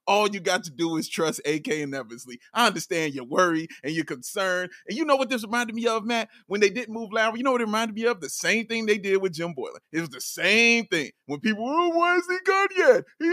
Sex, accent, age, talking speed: male, American, 30-49, 275 wpm